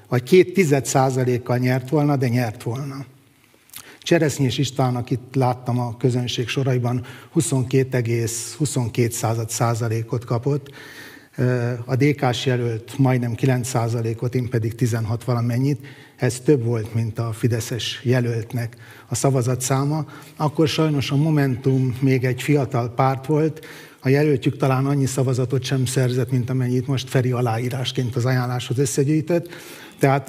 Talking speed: 125 wpm